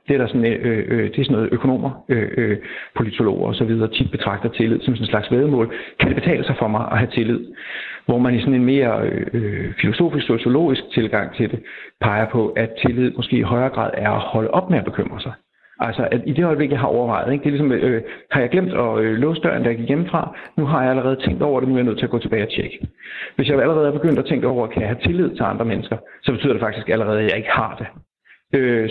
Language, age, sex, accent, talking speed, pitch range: Danish, 60-79, male, native, 270 wpm, 115-135 Hz